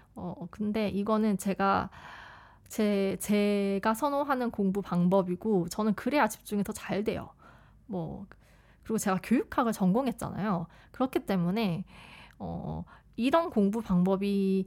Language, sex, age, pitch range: Korean, female, 20-39, 185-235 Hz